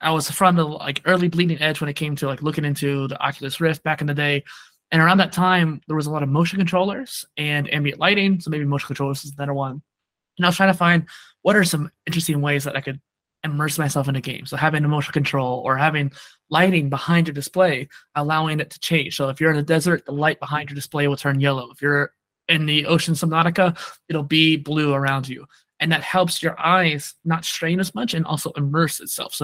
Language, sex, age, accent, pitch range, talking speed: English, male, 20-39, American, 145-165 Hz, 235 wpm